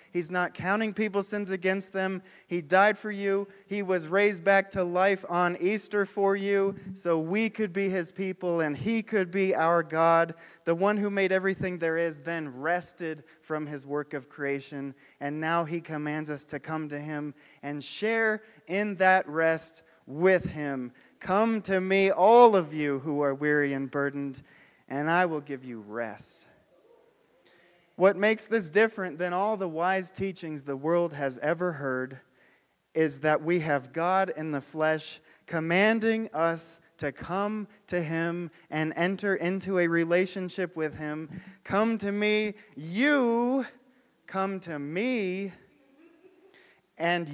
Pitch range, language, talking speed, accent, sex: 155-195 Hz, English, 155 wpm, American, male